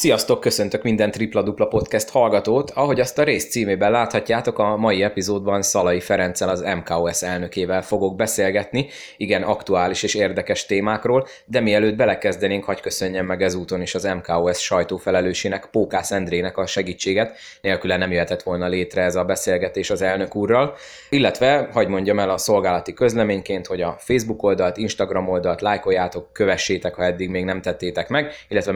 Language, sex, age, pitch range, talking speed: Hungarian, male, 20-39, 95-115 Hz, 160 wpm